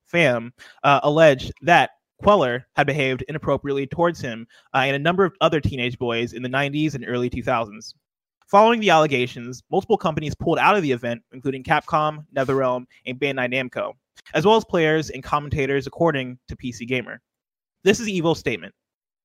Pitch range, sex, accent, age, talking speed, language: 130-170 Hz, male, American, 20-39, 170 wpm, English